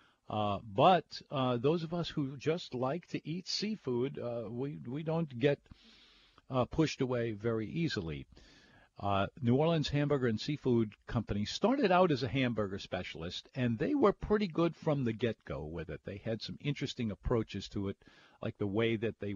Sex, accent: male, American